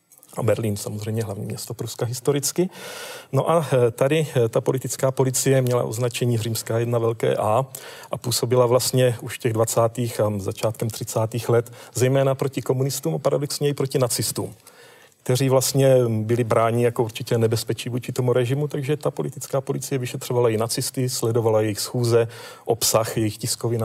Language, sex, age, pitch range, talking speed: Czech, male, 40-59, 115-135 Hz, 155 wpm